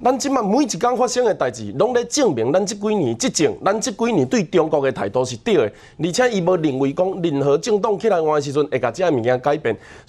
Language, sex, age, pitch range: Chinese, male, 30-49, 160-240 Hz